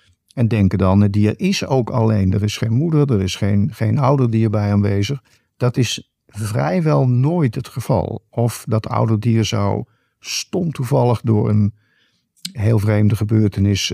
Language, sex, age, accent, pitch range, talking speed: Dutch, male, 50-69, Dutch, 105-130 Hz, 160 wpm